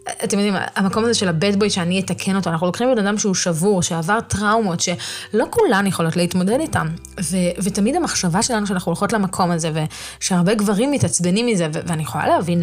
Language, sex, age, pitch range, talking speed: Hebrew, female, 20-39, 170-205 Hz, 175 wpm